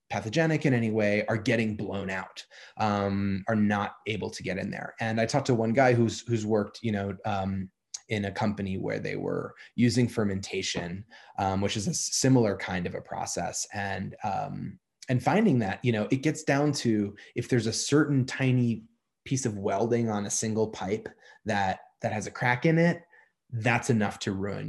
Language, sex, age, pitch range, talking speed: English, male, 20-39, 105-130 Hz, 190 wpm